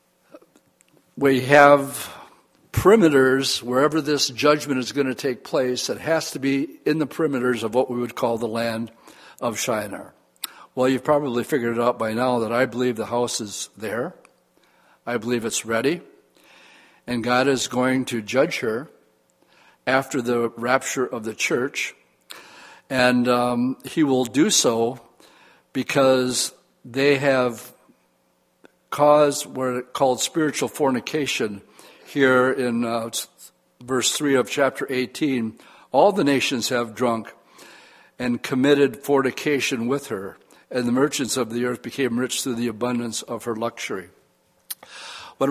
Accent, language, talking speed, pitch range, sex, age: American, English, 140 wpm, 120-140 Hz, male, 60-79